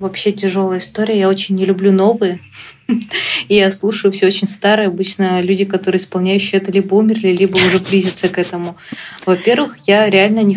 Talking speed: 165 wpm